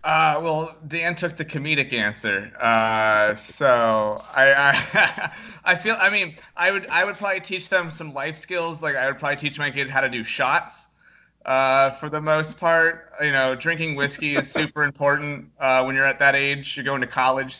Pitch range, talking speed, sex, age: 125-155 Hz, 200 wpm, male, 30-49